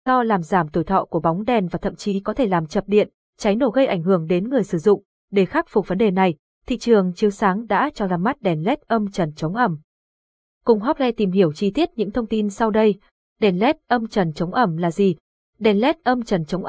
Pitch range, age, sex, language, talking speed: 185-235 Hz, 20-39, female, Vietnamese, 250 wpm